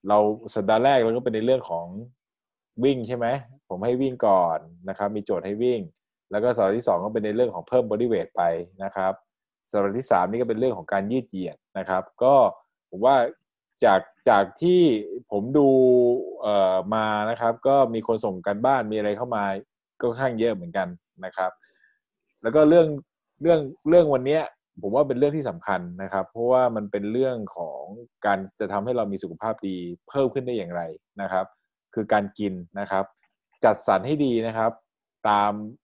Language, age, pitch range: Thai, 20-39, 100-130 Hz